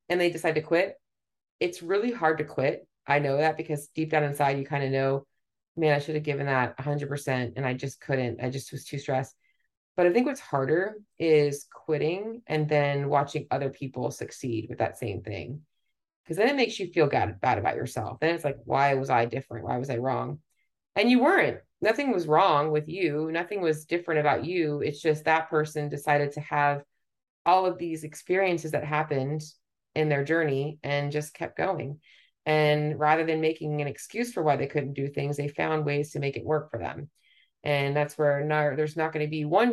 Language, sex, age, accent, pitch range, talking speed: English, female, 30-49, American, 135-160 Hz, 210 wpm